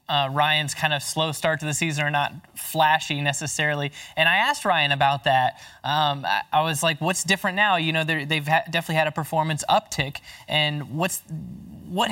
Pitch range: 140-170 Hz